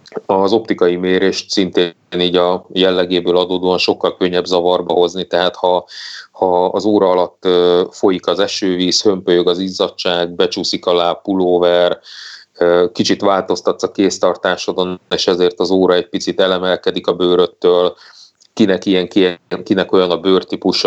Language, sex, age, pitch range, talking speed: Hungarian, male, 30-49, 90-95 Hz, 135 wpm